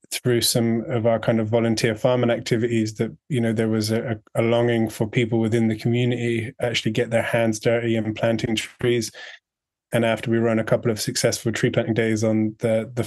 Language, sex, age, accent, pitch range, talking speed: English, male, 20-39, British, 115-120 Hz, 200 wpm